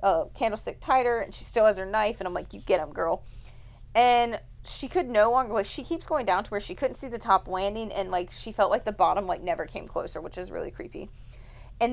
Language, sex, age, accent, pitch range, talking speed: English, female, 20-39, American, 170-210 Hz, 250 wpm